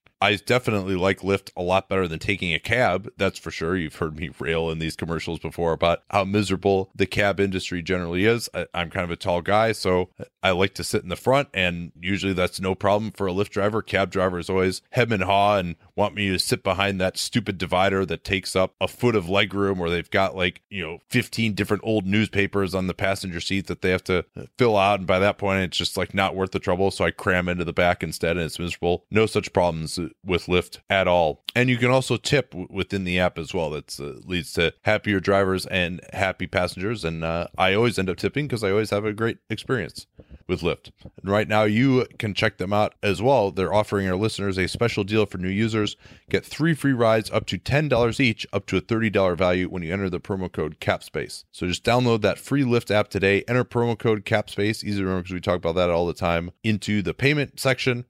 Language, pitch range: English, 90-110 Hz